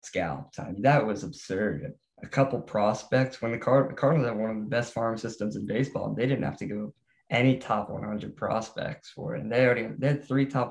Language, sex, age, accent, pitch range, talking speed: English, male, 10-29, American, 115-135 Hz, 235 wpm